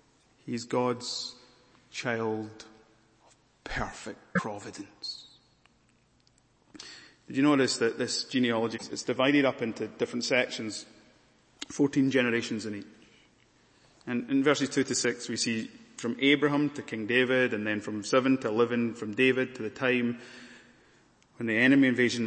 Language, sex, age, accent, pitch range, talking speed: English, male, 30-49, British, 115-170 Hz, 135 wpm